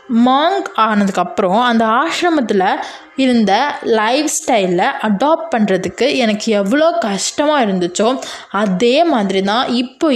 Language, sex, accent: Tamil, female, native